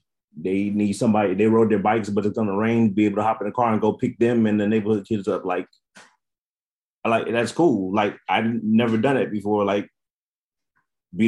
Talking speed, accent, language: 220 wpm, American, English